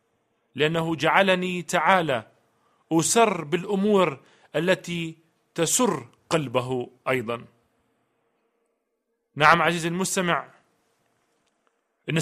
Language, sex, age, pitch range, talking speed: Arabic, male, 40-59, 150-185 Hz, 65 wpm